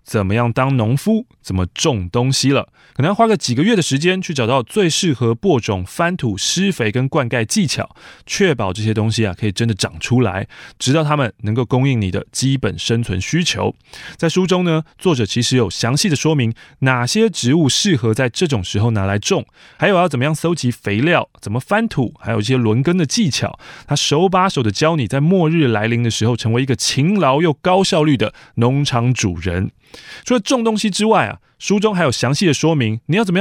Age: 20-39